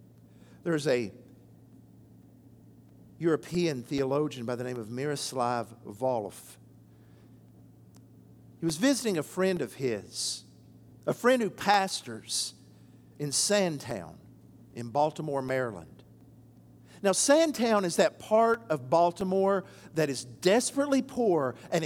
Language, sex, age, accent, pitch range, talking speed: English, male, 50-69, American, 120-175 Hz, 105 wpm